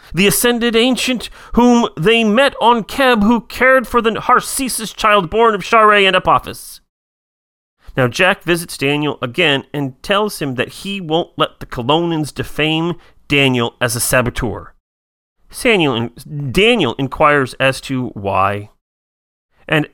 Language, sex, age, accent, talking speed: English, male, 40-59, American, 135 wpm